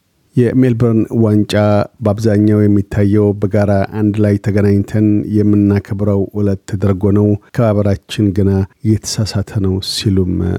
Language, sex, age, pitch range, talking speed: Amharic, male, 50-69, 100-110 Hz, 95 wpm